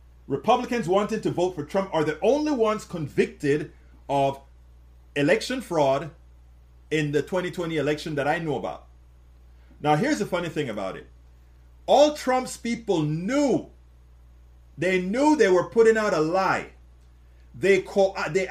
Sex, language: male, English